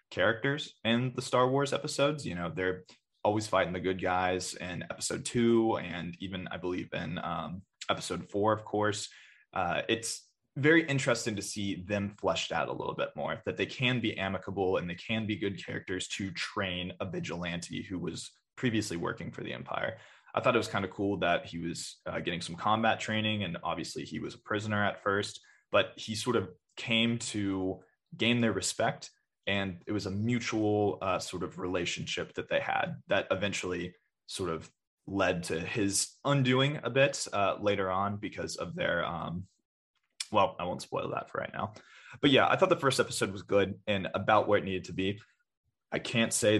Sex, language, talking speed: male, English, 195 wpm